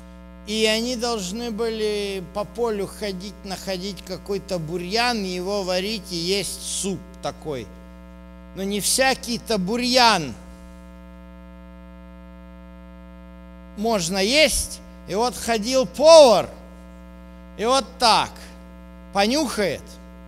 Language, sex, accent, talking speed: Russian, male, native, 90 wpm